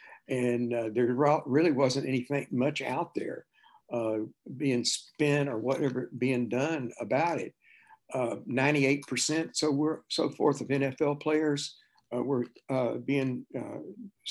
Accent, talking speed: American, 140 wpm